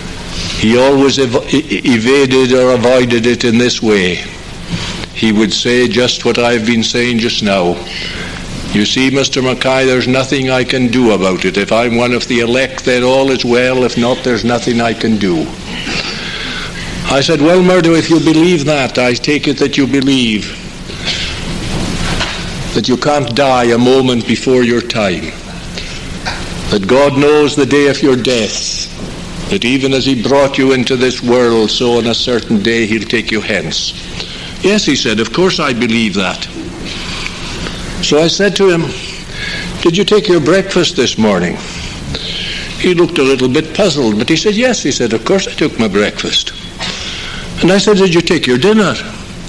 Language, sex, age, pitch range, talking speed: English, male, 60-79, 120-160 Hz, 170 wpm